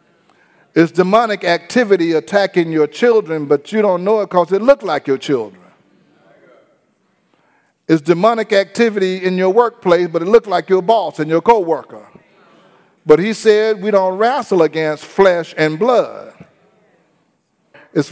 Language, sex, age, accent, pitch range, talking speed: English, male, 50-69, American, 165-220 Hz, 140 wpm